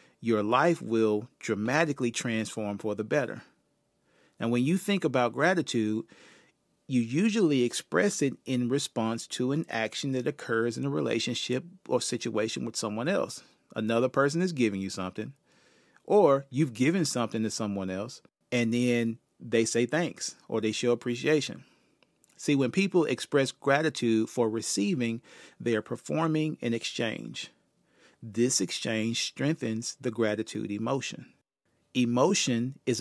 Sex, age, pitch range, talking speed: male, 40-59, 115-150 Hz, 135 wpm